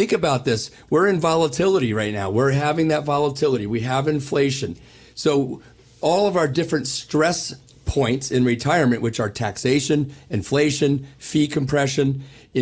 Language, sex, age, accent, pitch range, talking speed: English, male, 50-69, American, 125-155 Hz, 145 wpm